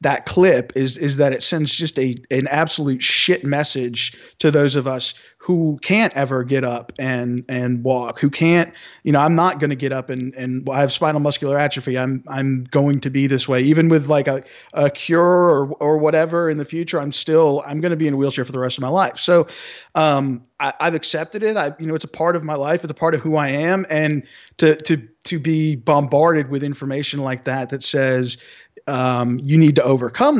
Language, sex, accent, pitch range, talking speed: English, male, American, 135-160 Hz, 225 wpm